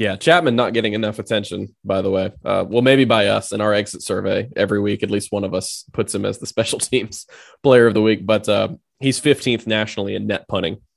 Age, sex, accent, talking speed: 20-39, male, American, 235 wpm